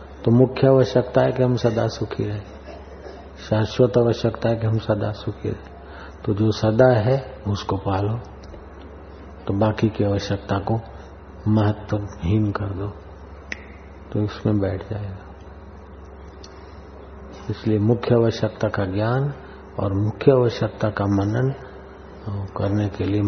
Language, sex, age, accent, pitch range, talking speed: Hindi, male, 50-69, native, 80-110 Hz, 125 wpm